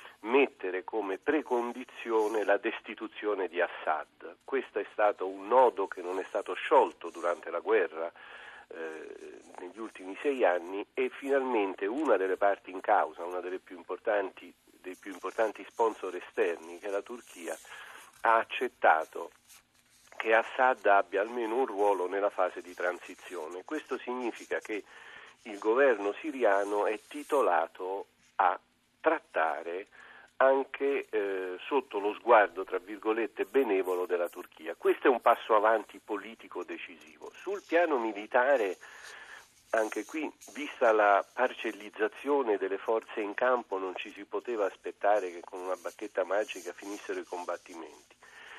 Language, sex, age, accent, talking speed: Italian, male, 50-69, native, 135 wpm